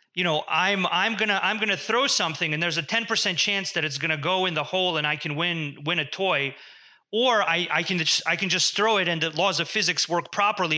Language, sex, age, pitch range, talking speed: English, male, 30-49, 155-190 Hz, 245 wpm